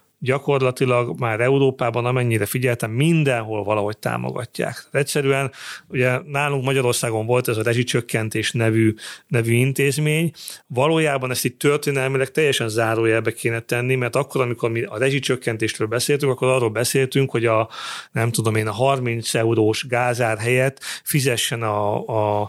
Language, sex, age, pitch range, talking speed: Hungarian, male, 40-59, 115-135 Hz, 135 wpm